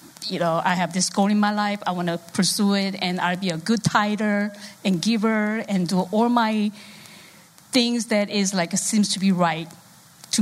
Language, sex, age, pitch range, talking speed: English, female, 50-69, 185-230 Hz, 200 wpm